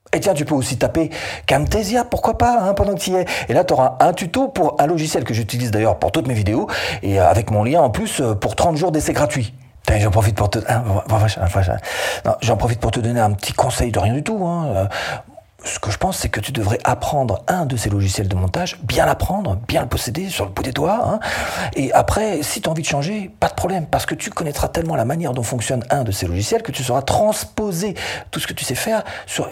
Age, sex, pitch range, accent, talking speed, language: 40-59, male, 105-165 Hz, French, 240 wpm, French